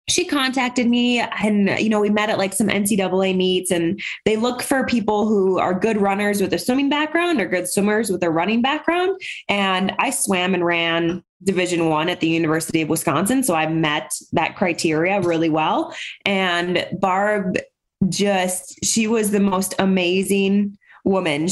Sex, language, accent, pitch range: female, English, American, 180-225 Hz